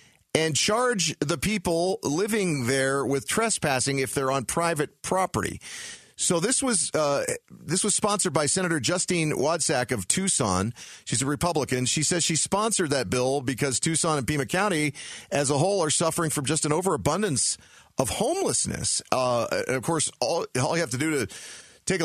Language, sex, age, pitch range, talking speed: English, male, 40-59, 130-170 Hz, 170 wpm